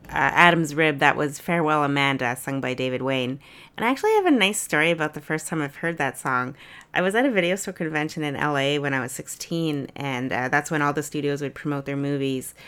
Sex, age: female, 30-49